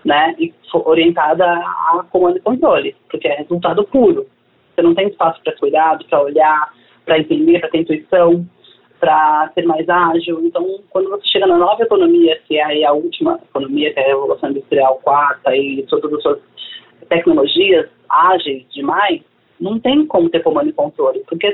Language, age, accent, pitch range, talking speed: Portuguese, 20-39, Brazilian, 155-245 Hz, 175 wpm